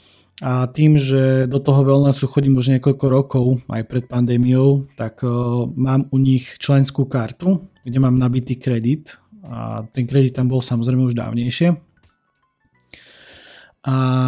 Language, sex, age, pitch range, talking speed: Slovak, male, 20-39, 125-140 Hz, 135 wpm